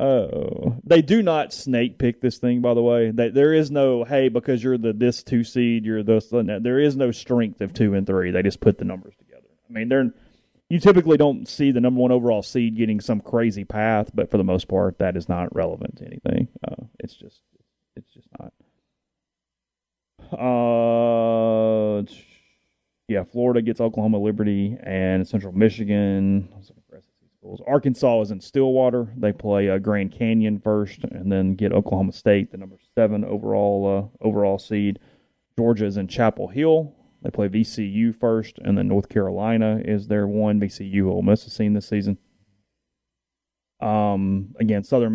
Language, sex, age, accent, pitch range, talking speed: English, male, 30-49, American, 100-120 Hz, 170 wpm